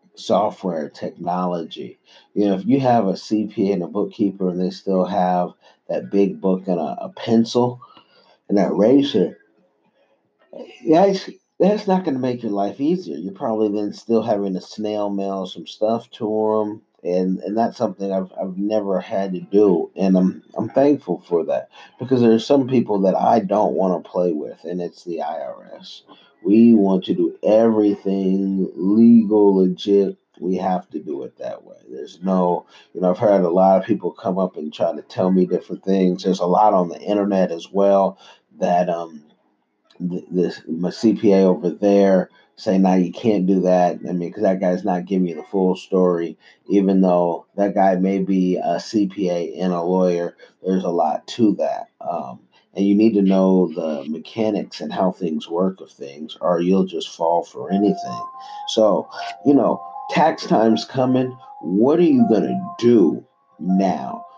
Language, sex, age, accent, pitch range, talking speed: English, male, 40-59, American, 90-110 Hz, 180 wpm